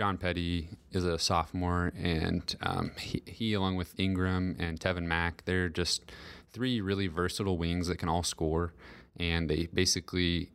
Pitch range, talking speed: 85-95 Hz, 160 wpm